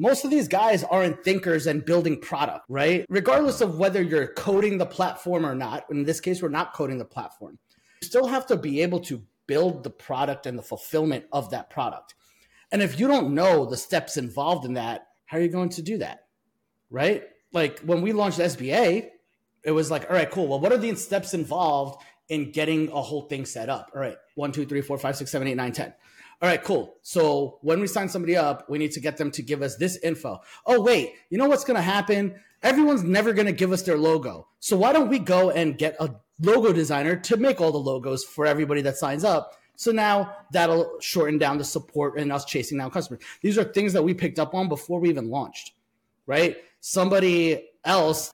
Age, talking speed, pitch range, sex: 30-49, 225 wpm, 145-190 Hz, male